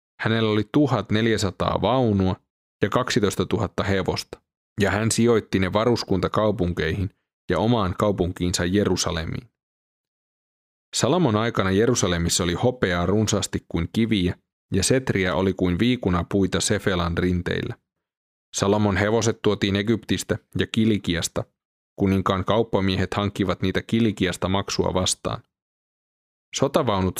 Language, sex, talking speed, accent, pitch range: Finnish, male, 105 wpm, native, 90-110 Hz